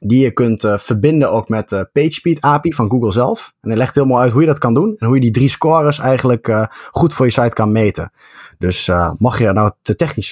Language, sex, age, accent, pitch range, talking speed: Dutch, male, 20-39, Dutch, 95-120 Hz, 260 wpm